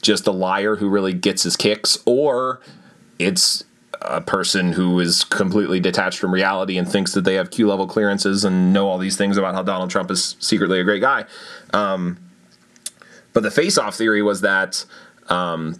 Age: 30-49